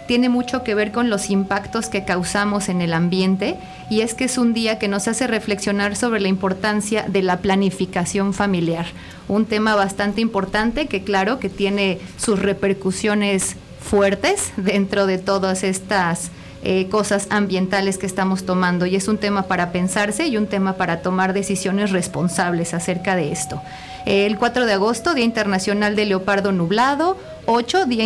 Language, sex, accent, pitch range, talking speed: Spanish, female, Mexican, 190-225 Hz, 165 wpm